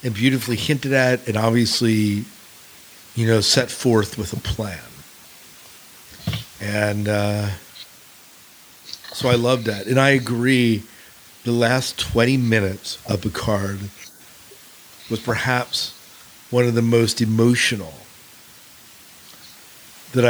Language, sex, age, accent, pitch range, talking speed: English, male, 50-69, American, 100-120 Hz, 105 wpm